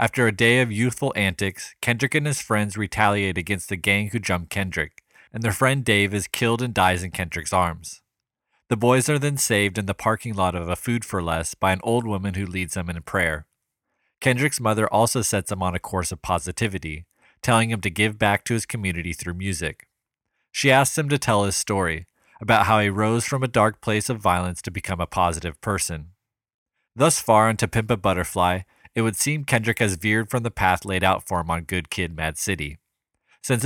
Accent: American